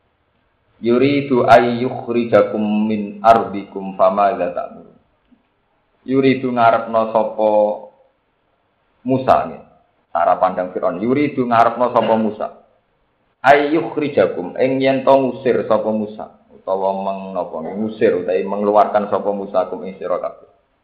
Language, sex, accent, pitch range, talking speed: Indonesian, male, native, 100-130 Hz, 90 wpm